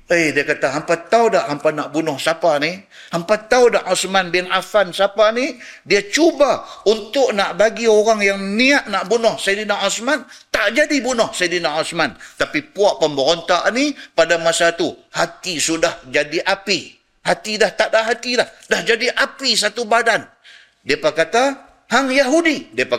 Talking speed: 165 wpm